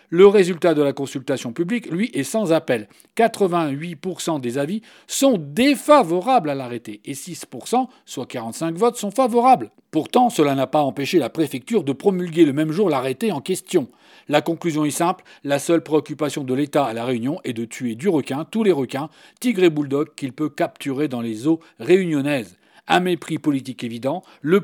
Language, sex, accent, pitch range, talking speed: French, male, French, 140-195 Hz, 180 wpm